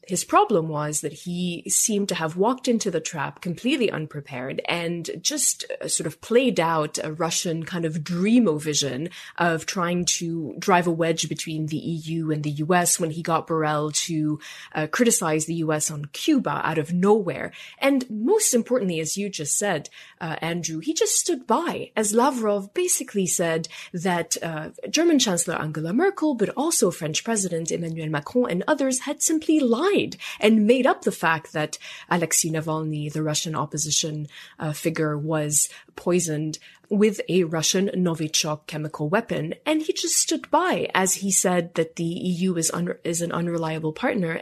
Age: 20-39